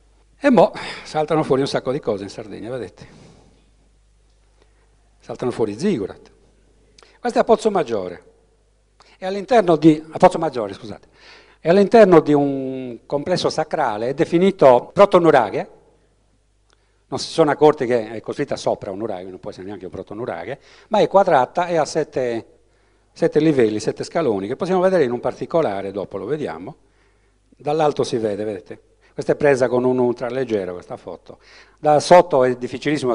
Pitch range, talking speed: 115-170 Hz, 155 wpm